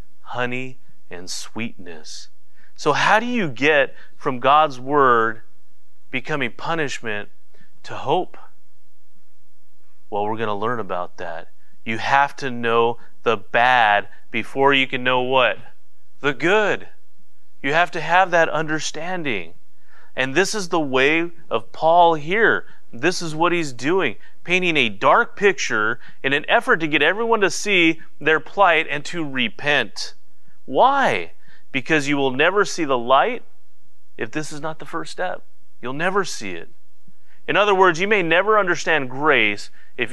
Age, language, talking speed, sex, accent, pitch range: 30-49, English, 150 wpm, male, American, 115-170 Hz